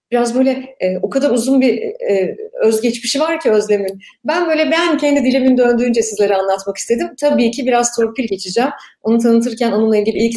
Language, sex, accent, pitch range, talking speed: Turkish, female, native, 200-240 Hz, 180 wpm